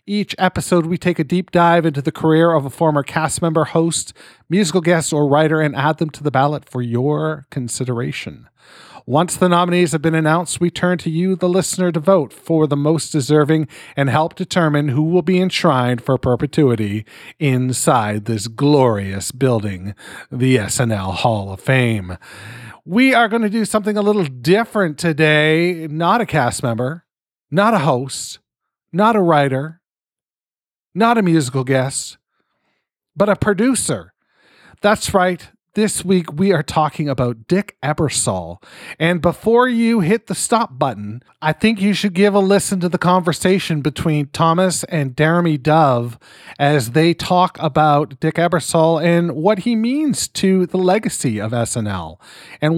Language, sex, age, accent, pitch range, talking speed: English, male, 40-59, American, 135-185 Hz, 160 wpm